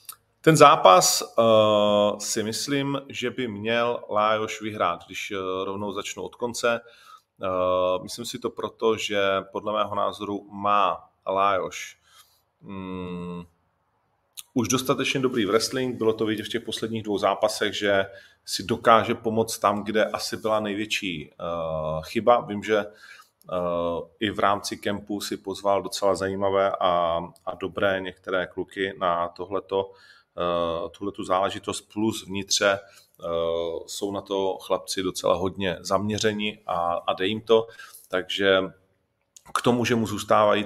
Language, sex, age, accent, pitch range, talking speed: Czech, male, 30-49, native, 95-110 Hz, 130 wpm